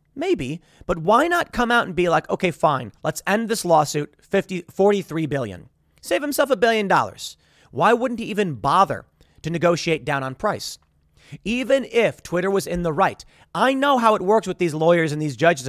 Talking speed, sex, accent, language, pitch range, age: 200 wpm, male, American, English, 135-205 Hz, 30-49